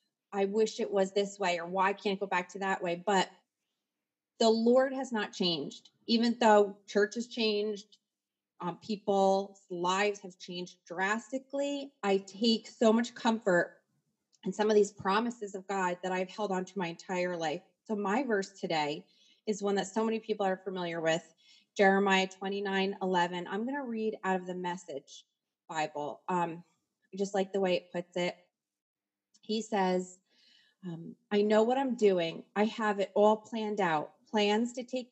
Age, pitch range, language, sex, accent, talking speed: 30-49, 185-225 Hz, English, female, American, 175 wpm